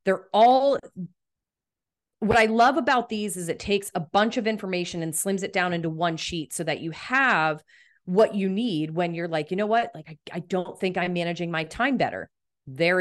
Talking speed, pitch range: 210 wpm, 165-210 Hz